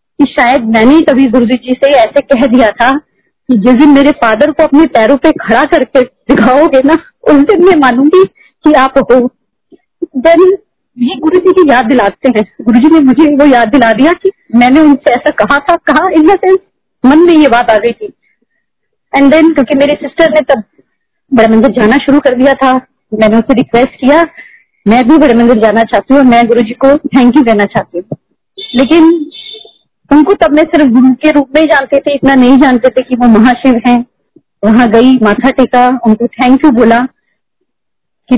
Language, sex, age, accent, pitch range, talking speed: Hindi, female, 30-49, native, 235-295 Hz, 185 wpm